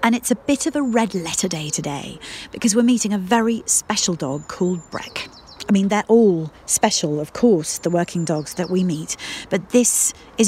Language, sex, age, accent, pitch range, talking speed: English, female, 40-59, British, 165-220 Hz, 200 wpm